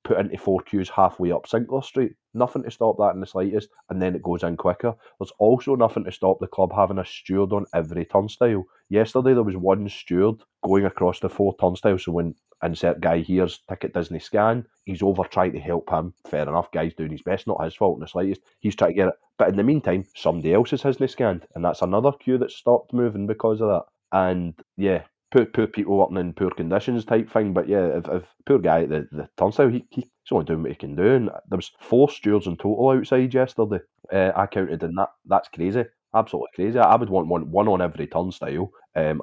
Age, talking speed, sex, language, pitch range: 30-49, 230 wpm, male, English, 85-110 Hz